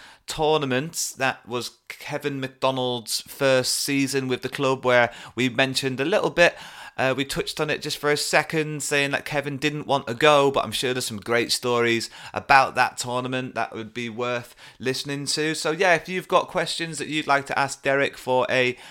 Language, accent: English, British